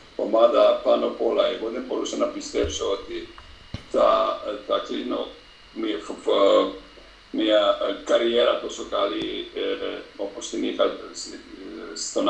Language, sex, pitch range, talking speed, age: Greek, male, 300-430 Hz, 100 wpm, 50-69